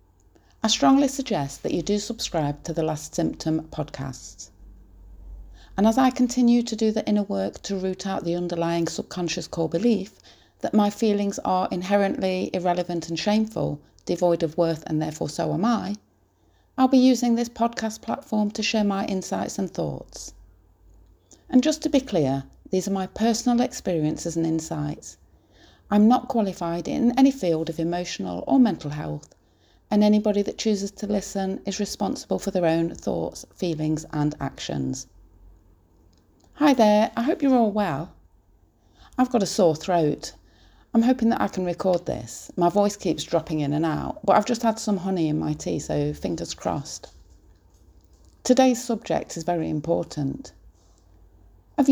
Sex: female